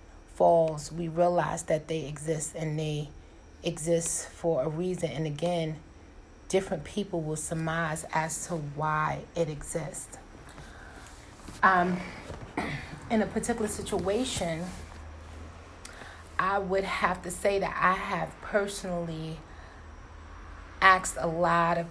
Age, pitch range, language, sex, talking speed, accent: 30-49, 150-185 Hz, English, female, 110 wpm, American